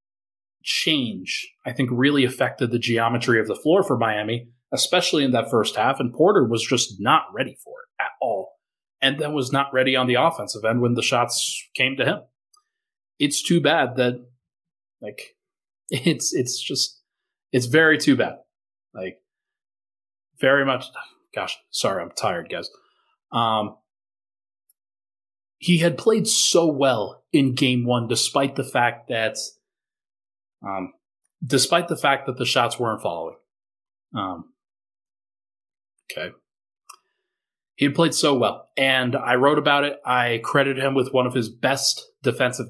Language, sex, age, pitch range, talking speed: English, male, 30-49, 120-140 Hz, 145 wpm